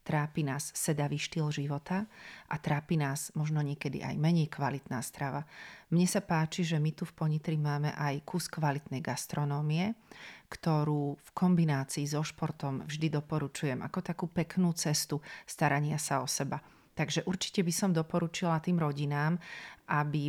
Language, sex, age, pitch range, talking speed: Slovak, female, 40-59, 145-170 Hz, 150 wpm